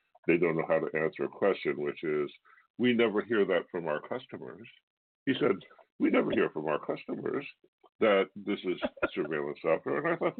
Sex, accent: female, American